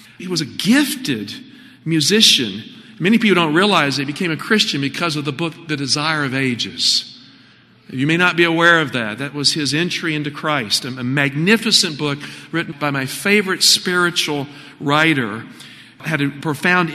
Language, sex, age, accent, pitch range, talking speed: English, male, 50-69, American, 150-200 Hz, 165 wpm